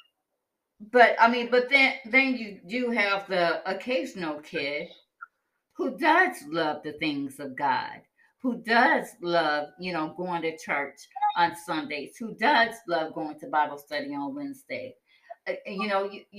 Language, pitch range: English, 170-265 Hz